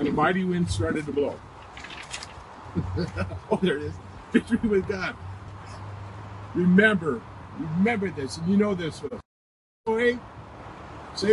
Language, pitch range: English, 155-210 Hz